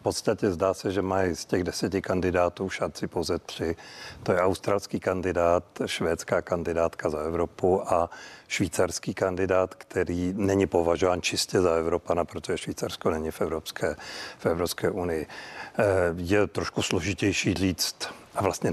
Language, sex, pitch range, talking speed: Czech, male, 90-105 Hz, 140 wpm